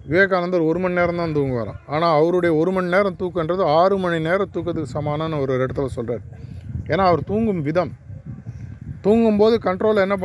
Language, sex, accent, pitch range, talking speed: Tamil, male, native, 130-190 Hz, 160 wpm